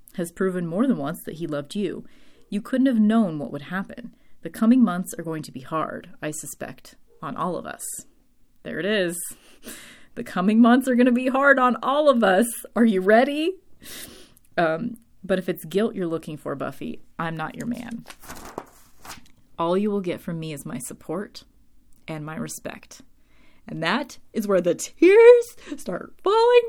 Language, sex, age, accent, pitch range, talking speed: English, female, 30-49, American, 170-245 Hz, 180 wpm